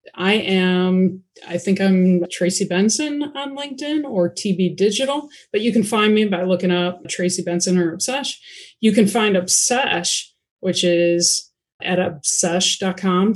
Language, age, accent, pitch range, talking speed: English, 30-49, American, 185-215 Hz, 145 wpm